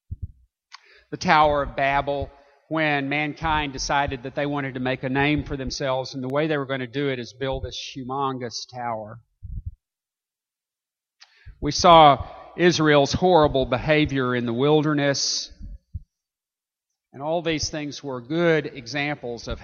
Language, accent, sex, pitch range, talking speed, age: English, American, male, 105-155 Hz, 140 wpm, 50-69